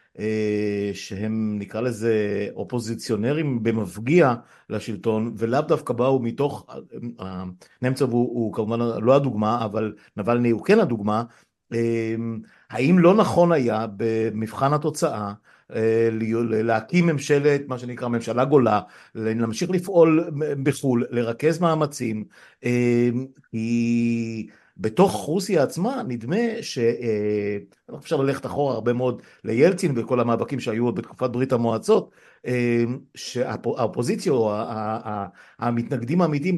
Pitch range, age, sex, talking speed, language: 115-160 Hz, 50-69, male, 110 wpm, Hebrew